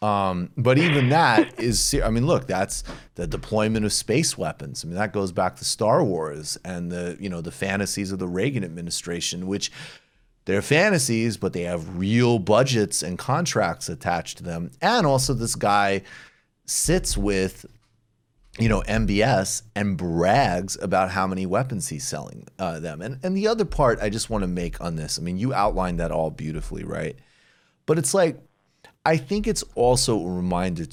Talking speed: 180 wpm